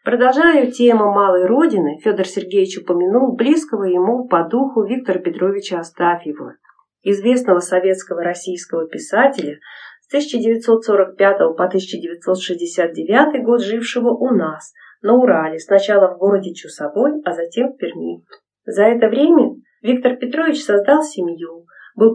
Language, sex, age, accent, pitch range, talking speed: Russian, female, 40-59, native, 185-250 Hz, 120 wpm